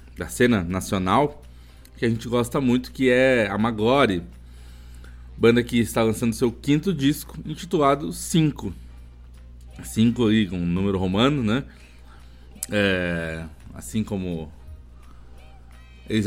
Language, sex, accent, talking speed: Portuguese, male, Brazilian, 120 wpm